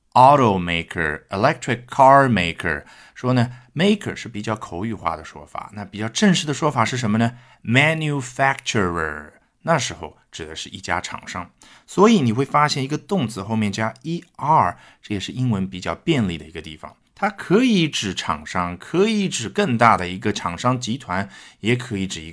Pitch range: 90-135 Hz